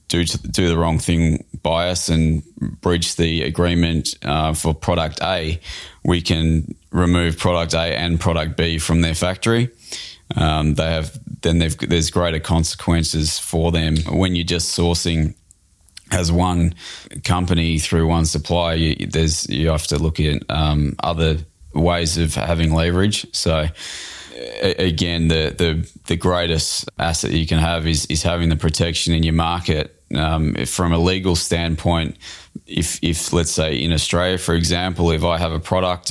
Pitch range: 80-85 Hz